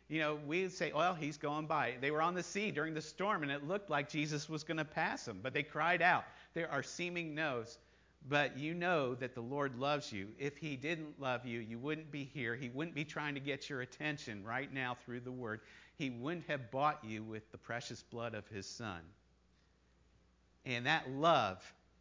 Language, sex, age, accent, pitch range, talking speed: English, male, 50-69, American, 115-150 Hz, 215 wpm